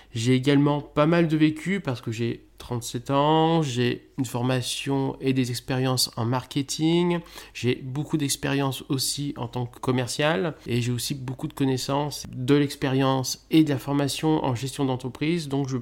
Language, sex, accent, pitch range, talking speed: French, male, French, 120-150 Hz, 165 wpm